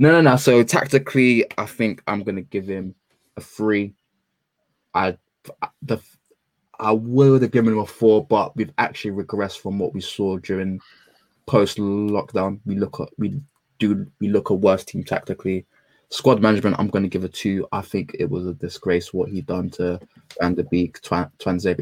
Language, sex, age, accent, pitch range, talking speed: English, male, 20-39, British, 95-115 Hz, 185 wpm